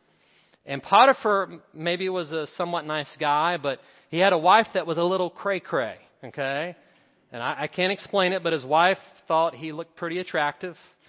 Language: English